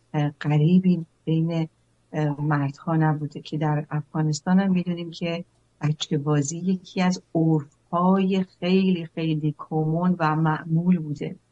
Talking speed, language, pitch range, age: 110 wpm, English, 155-175 Hz, 60-79